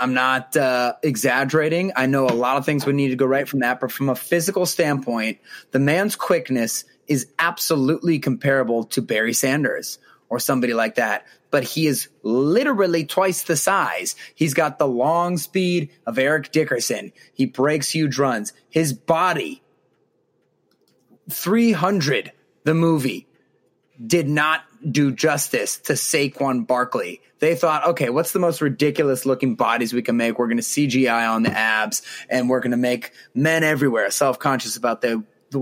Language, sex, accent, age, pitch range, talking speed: English, male, American, 30-49, 125-155 Hz, 160 wpm